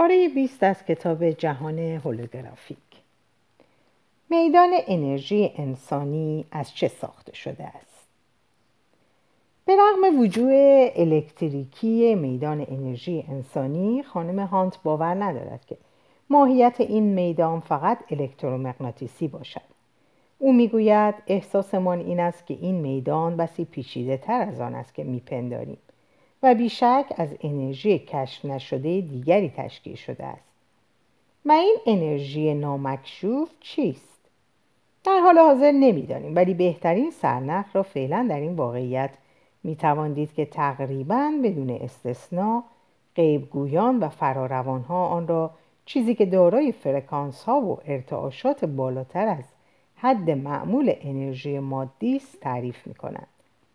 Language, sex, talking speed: Persian, female, 110 wpm